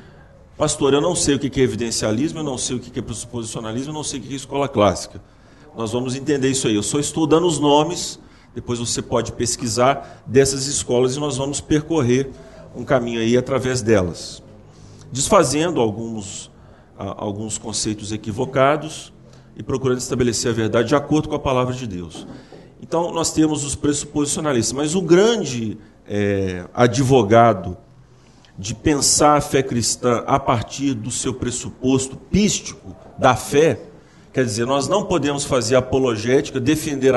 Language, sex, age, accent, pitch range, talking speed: Portuguese, male, 40-59, Brazilian, 115-145 Hz, 155 wpm